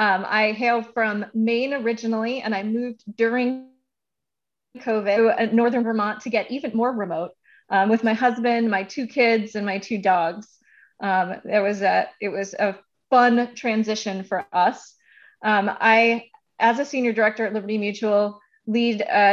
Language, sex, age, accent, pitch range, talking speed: English, female, 30-49, American, 200-235 Hz, 160 wpm